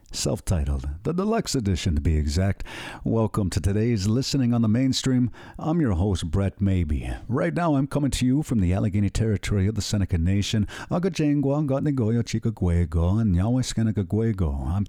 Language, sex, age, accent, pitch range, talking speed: English, male, 50-69, American, 95-130 Hz, 135 wpm